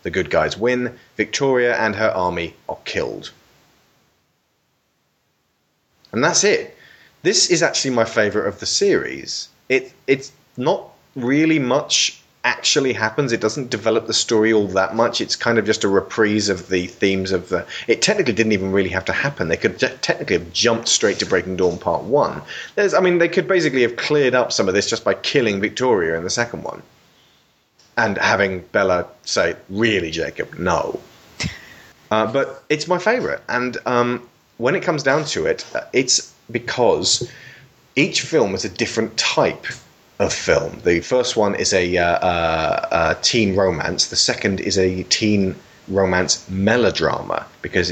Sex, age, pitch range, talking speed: male, 30-49, 95-130 Hz, 170 wpm